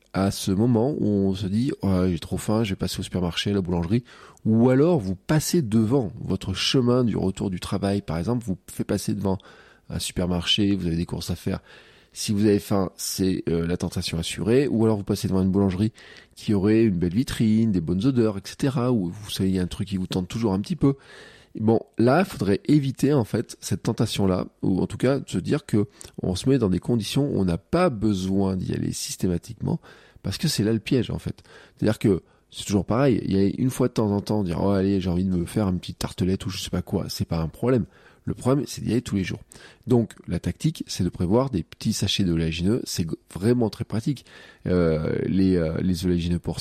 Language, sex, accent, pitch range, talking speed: French, male, French, 90-115 Hz, 240 wpm